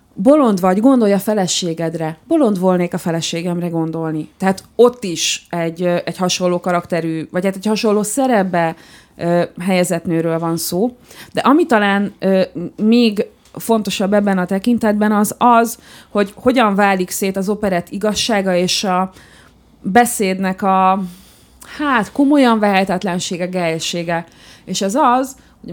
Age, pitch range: 30-49, 170-215 Hz